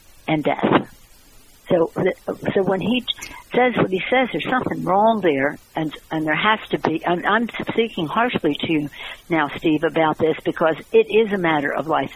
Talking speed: 185 wpm